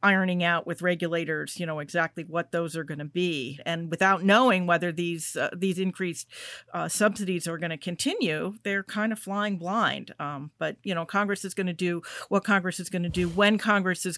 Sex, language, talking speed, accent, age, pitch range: female, English, 210 wpm, American, 50-69, 170-210 Hz